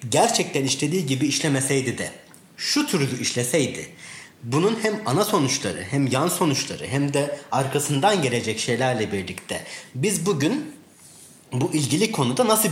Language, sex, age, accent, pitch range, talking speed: Turkish, male, 30-49, native, 120-180 Hz, 125 wpm